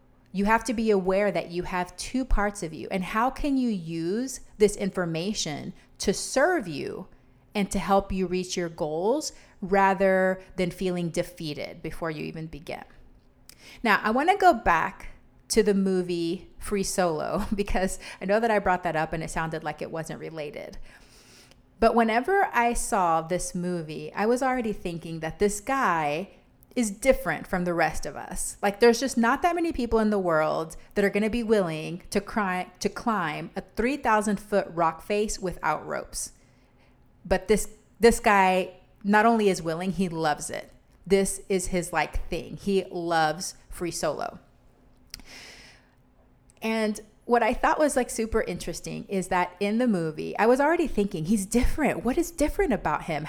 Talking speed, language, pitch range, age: 170 wpm, English, 175-225 Hz, 30-49